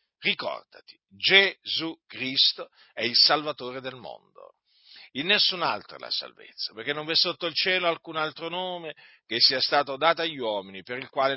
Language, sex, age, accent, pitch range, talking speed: Italian, male, 50-69, native, 120-165 Hz, 165 wpm